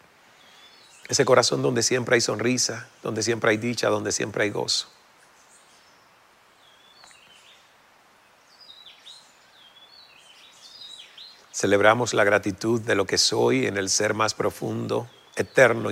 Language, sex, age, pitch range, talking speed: Spanish, male, 40-59, 105-130 Hz, 100 wpm